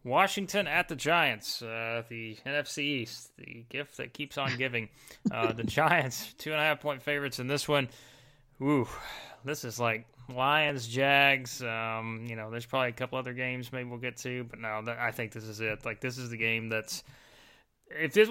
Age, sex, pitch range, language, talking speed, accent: 20-39, male, 120-145 Hz, English, 195 wpm, American